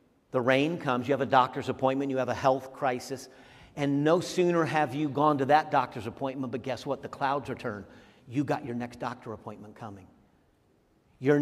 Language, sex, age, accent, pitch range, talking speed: English, male, 50-69, American, 130-155 Hz, 195 wpm